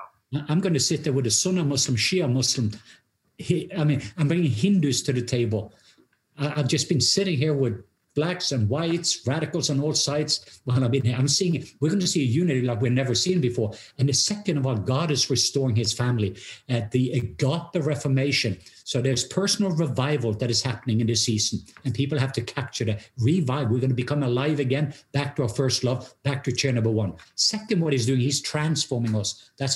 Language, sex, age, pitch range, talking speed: English, male, 50-69, 120-145 Hz, 215 wpm